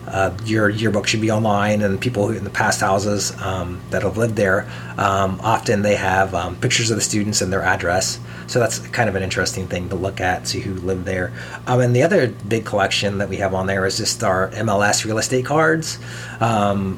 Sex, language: male, English